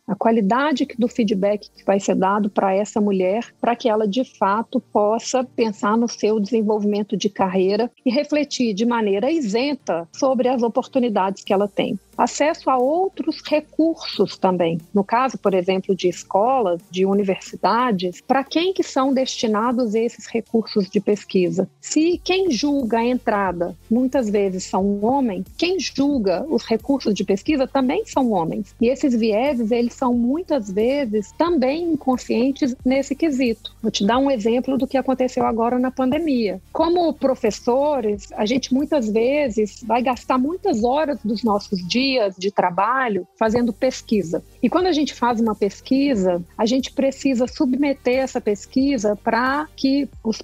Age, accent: 40-59, Brazilian